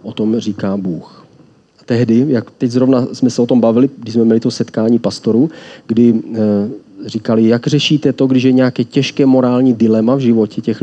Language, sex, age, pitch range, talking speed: Czech, male, 40-59, 110-135 Hz, 185 wpm